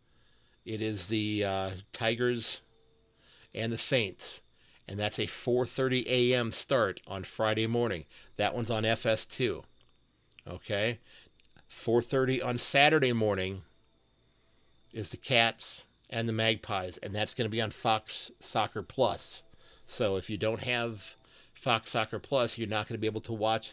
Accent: American